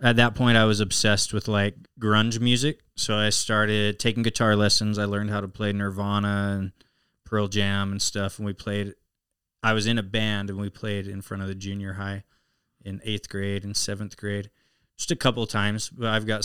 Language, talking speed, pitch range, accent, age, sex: English, 210 wpm, 100-115 Hz, American, 20-39, male